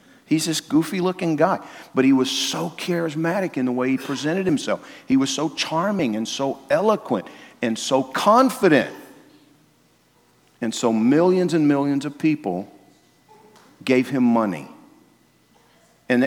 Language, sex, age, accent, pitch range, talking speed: English, male, 50-69, American, 125-175 Hz, 135 wpm